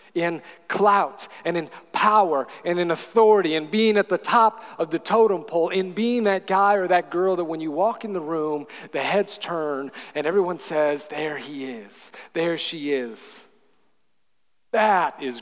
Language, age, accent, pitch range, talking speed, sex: English, 40-59, American, 135-200 Hz, 175 wpm, male